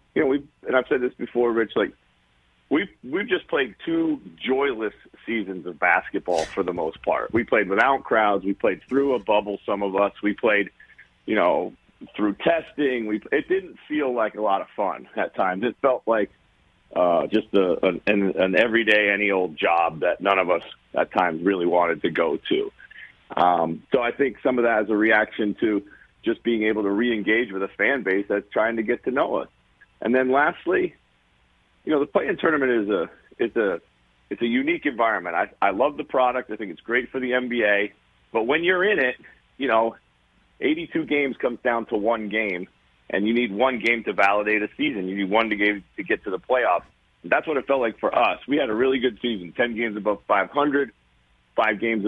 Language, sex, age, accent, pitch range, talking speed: English, male, 40-59, American, 100-125 Hz, 210 wpm